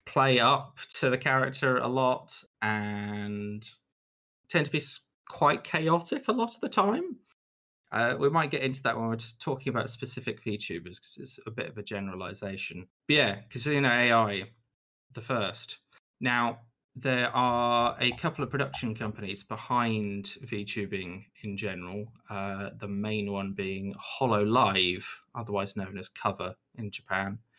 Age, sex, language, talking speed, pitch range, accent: 20-39, male, English, 150 wpm, 100-125 Hz, British